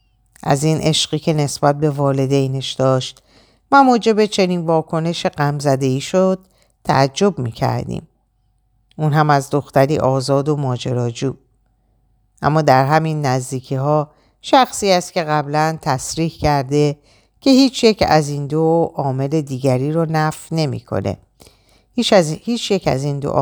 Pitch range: 125-175 Hz